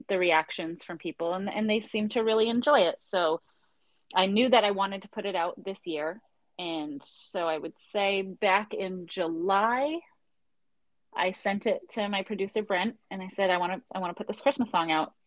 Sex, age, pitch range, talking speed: female, 30-49, 165-210 Hz, 210 wpm